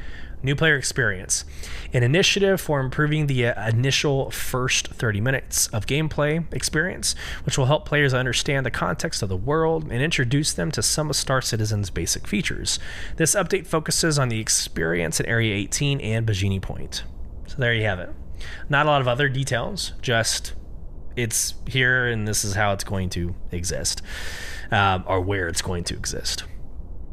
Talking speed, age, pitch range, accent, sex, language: 170 wpm, 20-39, 100-130 Hz, American, male, English